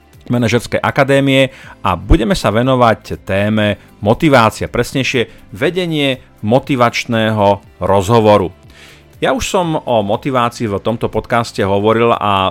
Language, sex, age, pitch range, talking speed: Slovak, male, 40-59, 105-125 Hz, 105 wpm